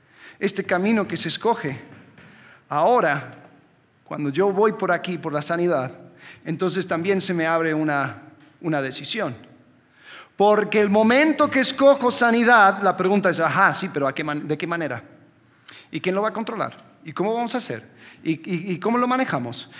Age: 40-59